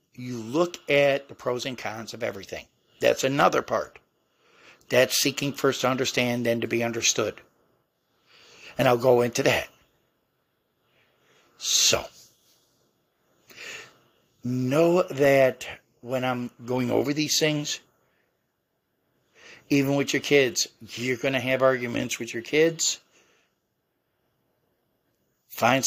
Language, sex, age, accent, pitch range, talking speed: English, male, 60-79, American, 120-145 Hz, 110 wpm